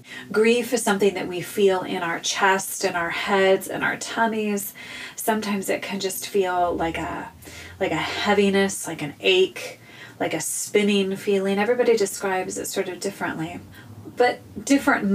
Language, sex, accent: English, female, American